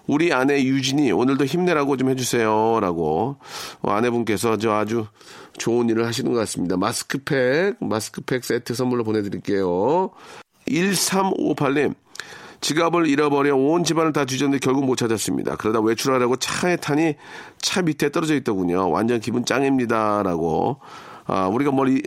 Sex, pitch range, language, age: male, 105-145 Hz, Korean, 40-59